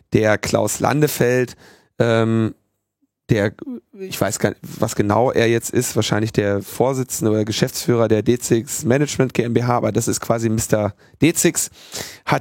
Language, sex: German, male